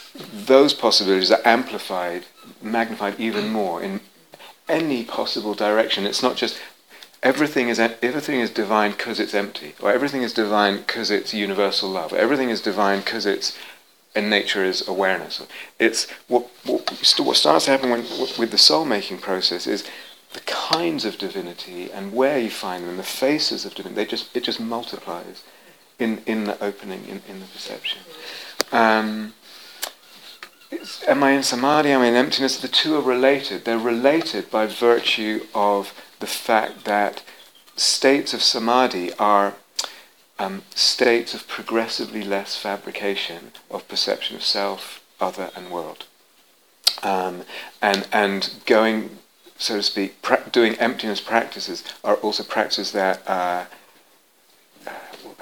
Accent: British